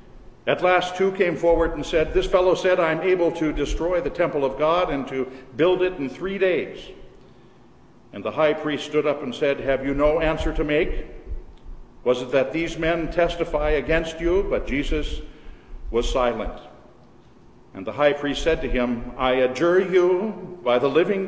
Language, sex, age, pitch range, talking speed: English, male, 50-69, 130-165 Hz, 185 wpm